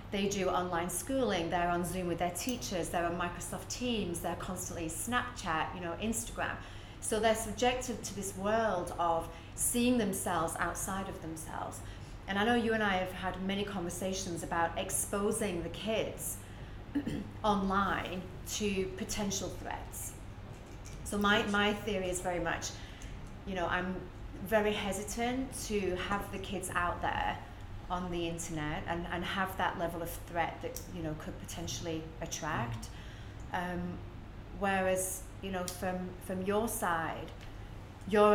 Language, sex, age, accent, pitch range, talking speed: English, female, 30-49, British, 125-200 Hz, 145 wpm